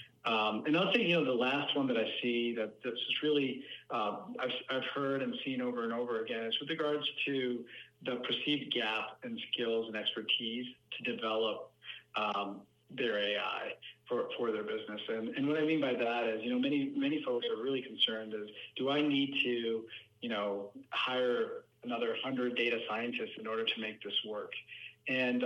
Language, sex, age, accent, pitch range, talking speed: English, male, 50-69, American, 115-150 Hz, 190 wpm